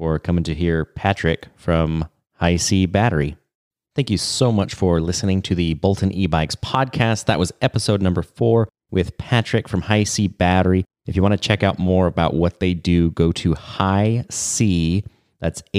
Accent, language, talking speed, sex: American, English, 175 wpm, male